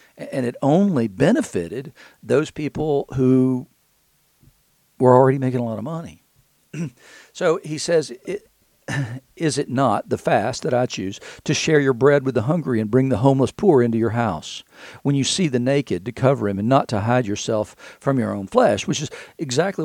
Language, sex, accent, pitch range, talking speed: English, male, American, 120-155 Hz, 180 wpm